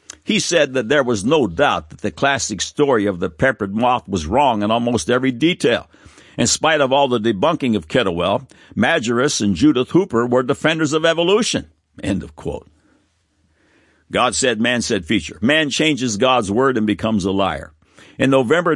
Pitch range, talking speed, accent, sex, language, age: 100-130 Hz, 175 wpm, American, male, English, 60-79